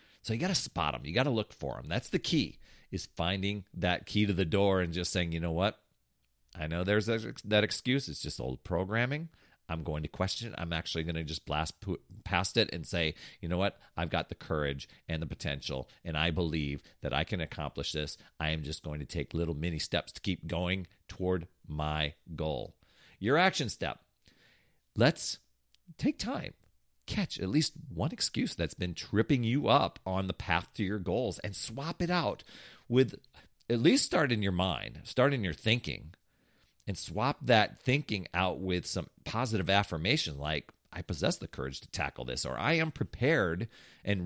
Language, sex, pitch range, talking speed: English, male, 80-115 Hz, 190 wpm